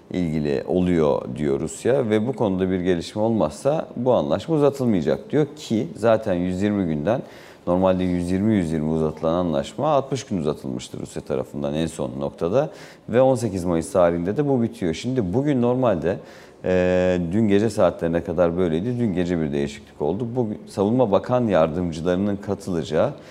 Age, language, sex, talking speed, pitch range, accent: 40-59, Turkish, male, 145 wpm, 85-120 Hz, native